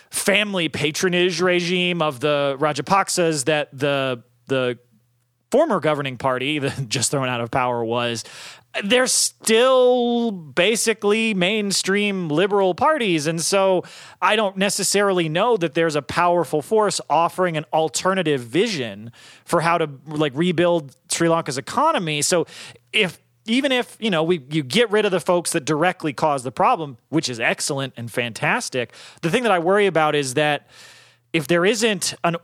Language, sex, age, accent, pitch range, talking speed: English, male, 30-49, American, 145-185 Hz, 155 wpm